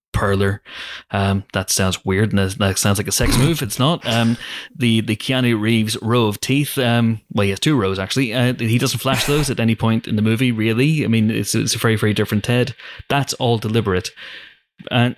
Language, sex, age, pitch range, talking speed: English, male, 20-39, 95-125 Hz, 215 wpm